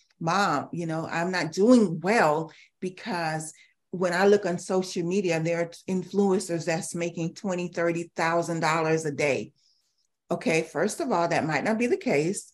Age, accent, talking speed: 40-59, American, 160 wpm